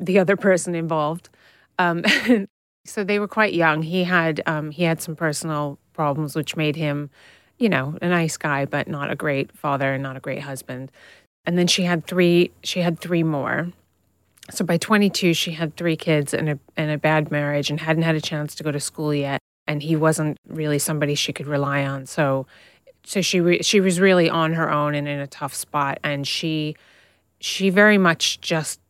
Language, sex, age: English, female, 30-49